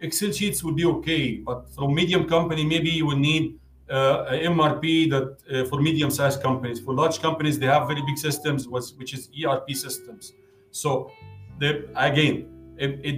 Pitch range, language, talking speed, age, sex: 135-160 Hz, English, 175 wpm, 40-59, male